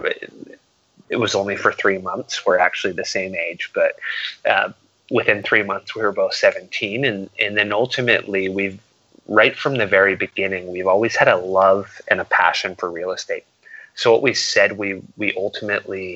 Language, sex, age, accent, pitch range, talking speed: English, male, 20-39, American, 95-120 Hz, 180 wpm